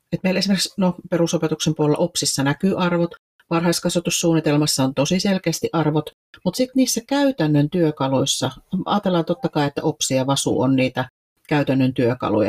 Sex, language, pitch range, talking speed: female, Finnish, 140-170 Hz, 145 wpm